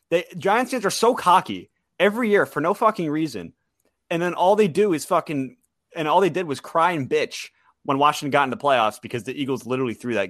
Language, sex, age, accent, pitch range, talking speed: English, male, 30-49, American, 130-205 Hz, 225 wpm